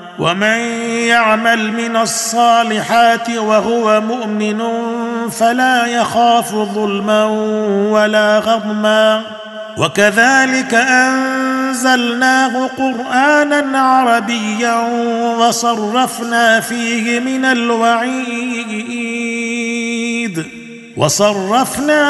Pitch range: 220-255 Hz